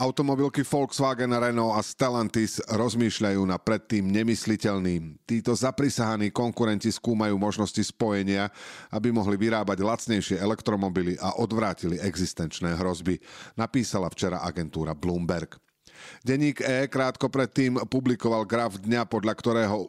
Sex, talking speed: male, 110 wpm